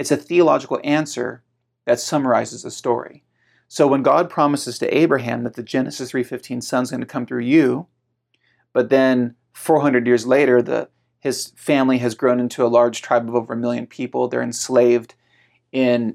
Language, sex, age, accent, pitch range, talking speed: English, male, 40-59, American, 120-135 Hz, 170 wpm